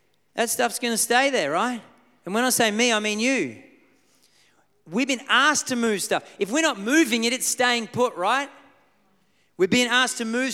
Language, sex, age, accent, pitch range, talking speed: English, male, 30-49, Australian, 210-255 Hz, 195 wpm